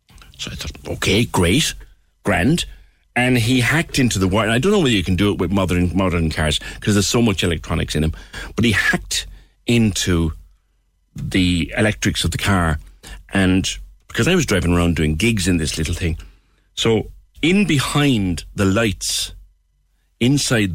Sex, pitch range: male, 85-135 Hz